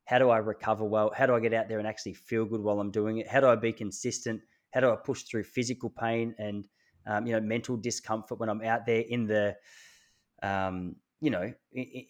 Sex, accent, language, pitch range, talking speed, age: male, Australian, English, 110-125 Hz, 235 wpm, 20-39